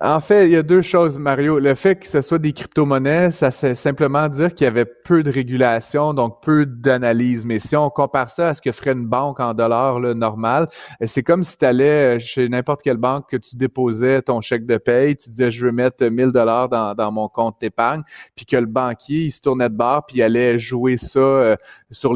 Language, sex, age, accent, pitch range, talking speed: French, male, 30-49, Canadian, 115-135 Hz, 235 wpm